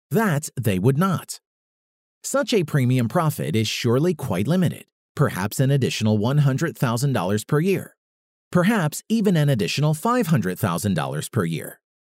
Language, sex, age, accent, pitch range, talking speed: English, male, 40-59, American, 115-180 Hz, 125 wpm